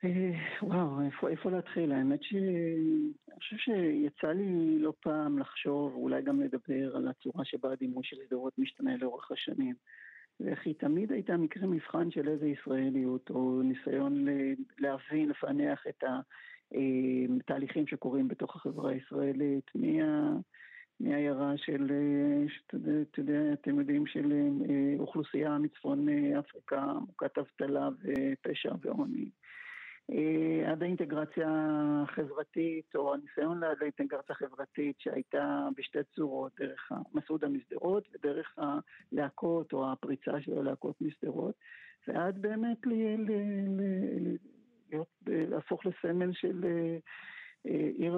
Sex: male